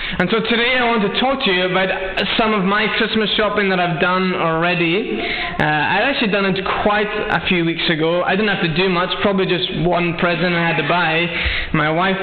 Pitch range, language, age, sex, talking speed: 170-205 Hz, English, 20-39, male, 220 wpm